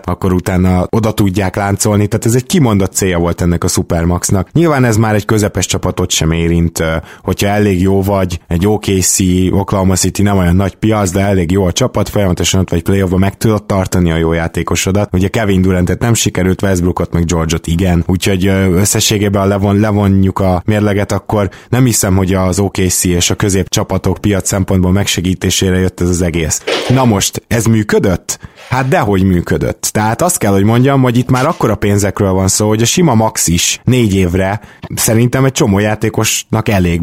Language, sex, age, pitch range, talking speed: Hungarian, male, 20-39, 95-110 Hz, 185 wpm